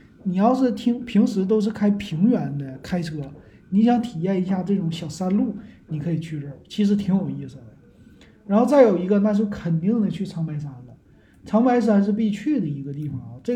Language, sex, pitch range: Chinese, male, 160-215 Hz